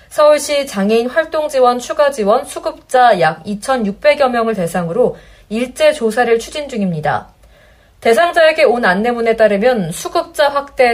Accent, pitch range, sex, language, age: native, 205-275 Hz, female, Korean, 20-39